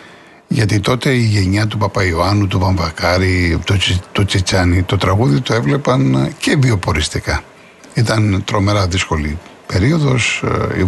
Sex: male